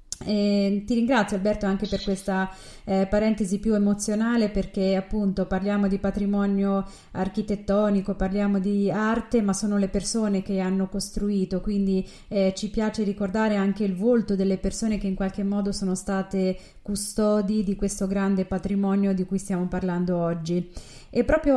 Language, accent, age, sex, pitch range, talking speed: Italian, native, 30-49, female, 190-215 Hz, 150 wpm